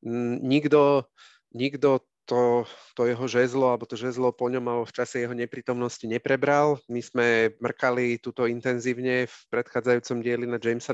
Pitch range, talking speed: 120-135 Hz, 150 wpm